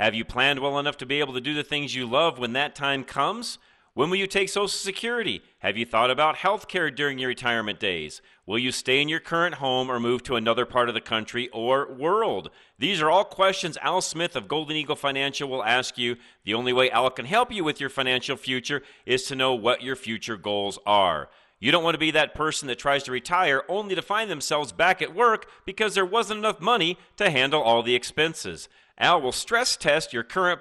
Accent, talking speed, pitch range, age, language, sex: American, 230 wpm, 130-195 Hz, 40-59, English, male